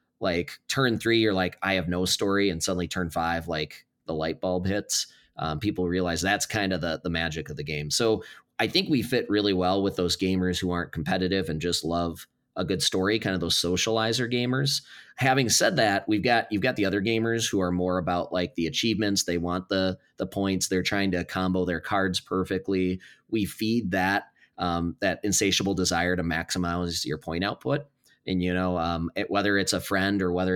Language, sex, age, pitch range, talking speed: English, male, 20-39, 85-100 Hz, 205 wpm